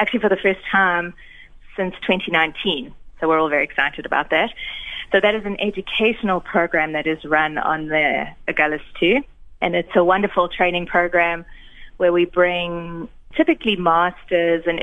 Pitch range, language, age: 160-190 Hz, English, 20-39